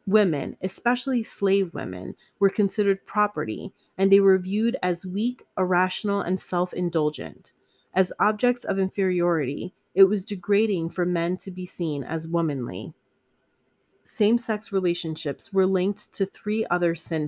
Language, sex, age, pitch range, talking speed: English, female, 30-49, 170-205 Hz, 130 wpm